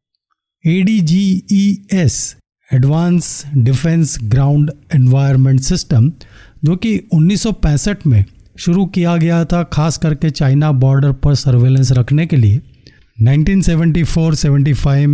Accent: native